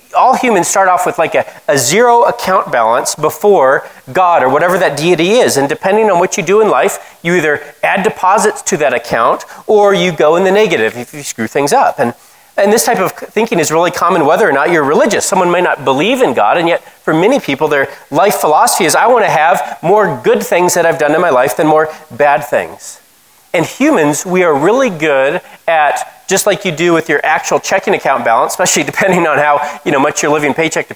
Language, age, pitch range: English, 30-49, 155-215 Hz